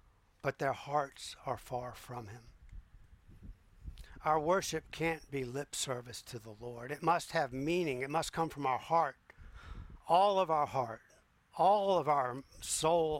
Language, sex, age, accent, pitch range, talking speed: English, male, 50-69, American, 105-155 Hz, 155 wpm